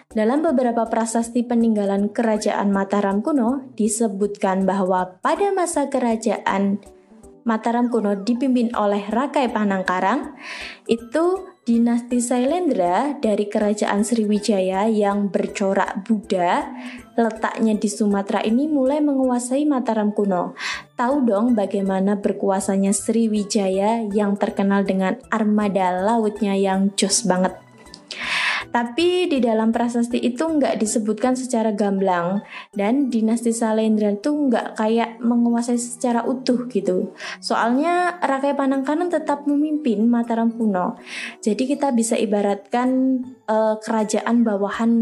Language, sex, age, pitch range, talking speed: Indonesian, female, 20-39, 205-250 Hz, 110 wpm